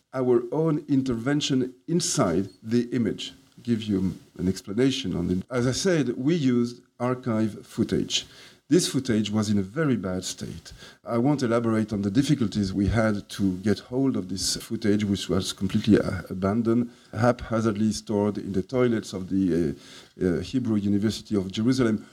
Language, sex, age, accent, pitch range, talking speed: English, male, 50-69, French, 105-135 Hz, 160 wpm